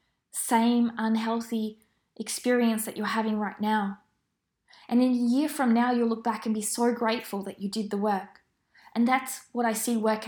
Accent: Australian